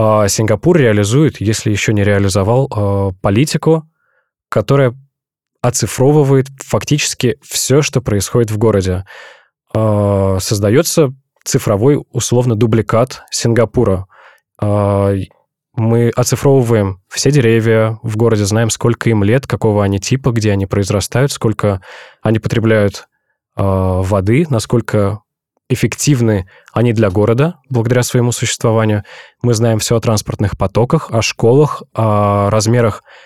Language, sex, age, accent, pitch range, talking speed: Russian, male, 20-39, native, 105-130 Hz, 105 wpm